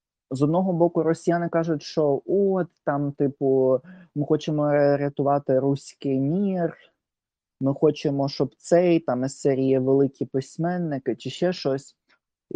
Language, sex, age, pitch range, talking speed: Ukrainian, male, 20-39, 125-160 Hz, 120 wpm